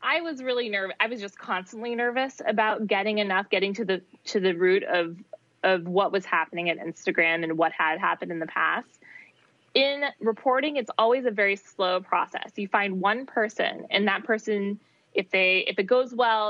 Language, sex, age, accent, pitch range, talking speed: English, female, 20-39, American, 180-220 Hz, 195 wpm